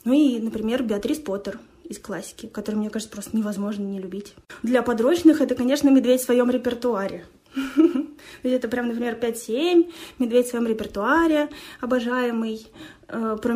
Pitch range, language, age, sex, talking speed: 220-275 Hz, Russian, 20-39, female, 145 wpm